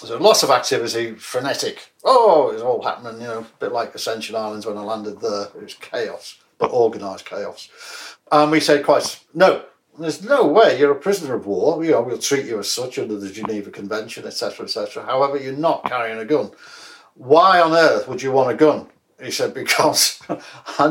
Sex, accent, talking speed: male, British, 210 wpm